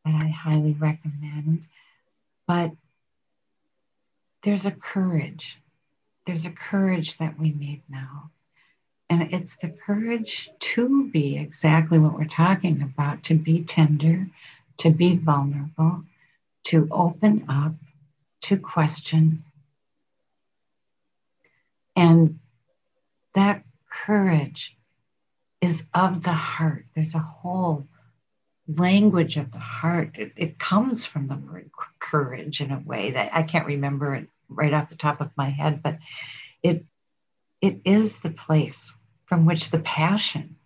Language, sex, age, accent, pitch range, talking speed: English, female, 60-79, American, 145-170 Hz, 120 wpm